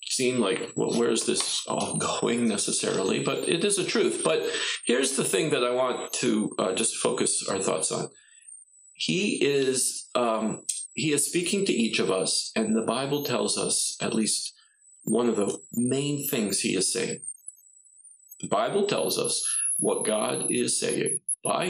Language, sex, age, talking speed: English, male, 40-59, 170 wpm